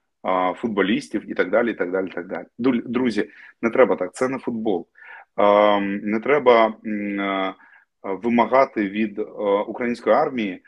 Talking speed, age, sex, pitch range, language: 130 wpm, 30-49, male, 100-120 Hz, Ukrainian